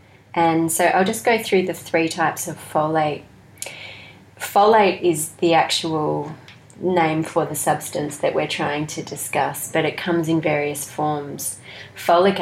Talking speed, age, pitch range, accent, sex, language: 150 wpm, 30-49, 155-180 Hz, Australian, female, English